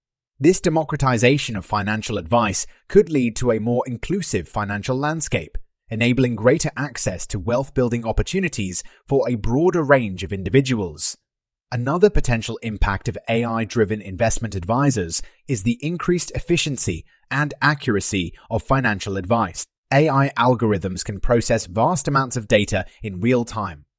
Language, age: English, 30-49